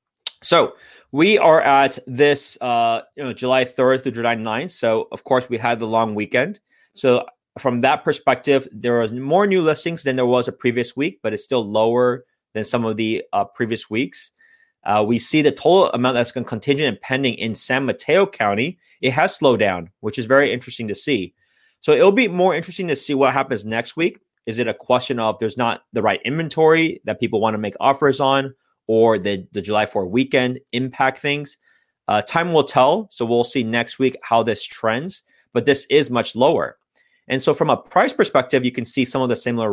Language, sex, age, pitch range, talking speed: English, male, 20-39, 115-145 Hz, 210 wpm